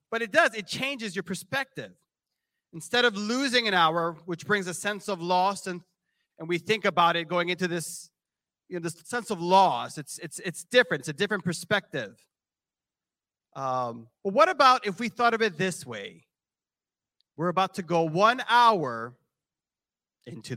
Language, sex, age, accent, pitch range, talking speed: English, male, 30-49, American, 175-255 Hz, 170 wpm